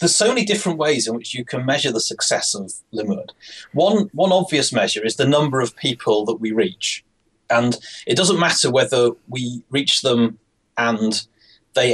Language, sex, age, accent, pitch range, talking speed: English, male, 30-49, British, 115-155 Hz, 180 wpm